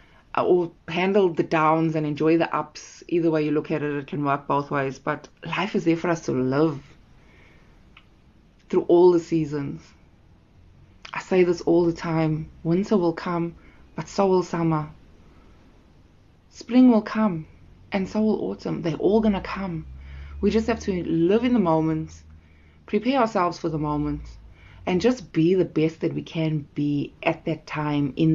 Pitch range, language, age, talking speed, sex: 140-185 Hz, English, 20-39, 175 wpm, female